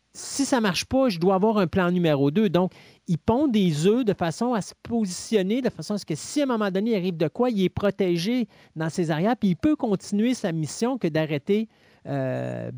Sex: male